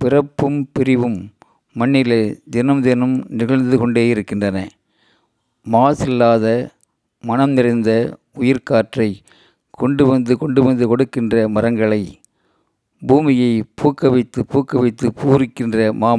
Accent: native